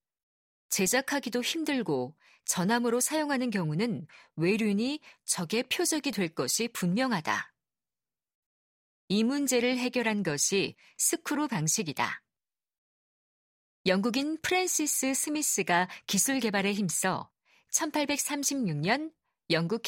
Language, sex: Korean, female